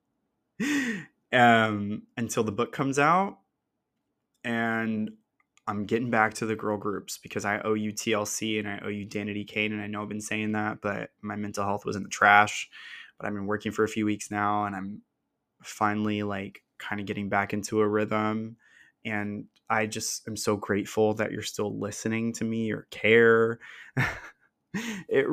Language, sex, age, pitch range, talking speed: English, male, 20-39, 105-115 Hz, 180 wpm